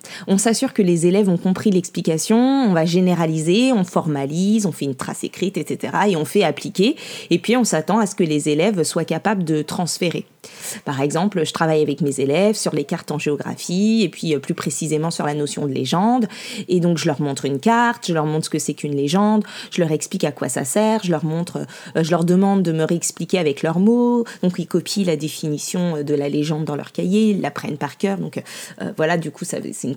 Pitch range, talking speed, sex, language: 160-210 Hz, 230 wpm, female, French